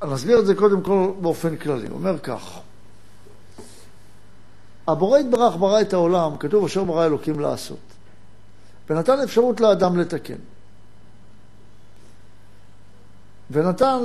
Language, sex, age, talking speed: Hebrew, male, 60-79, 105 wpm